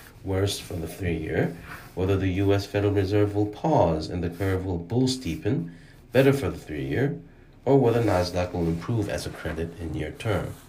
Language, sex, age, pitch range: Korean, male, 30-49, 90-120 Hz